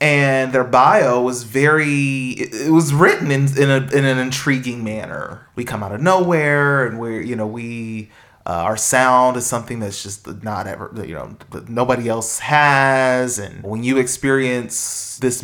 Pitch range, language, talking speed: 115-155 Hz, English, 175 wpm